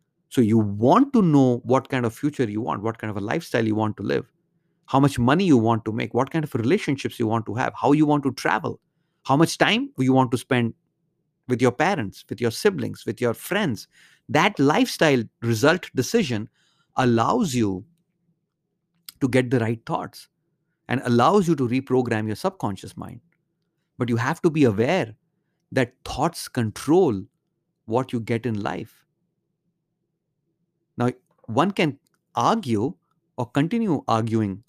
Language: English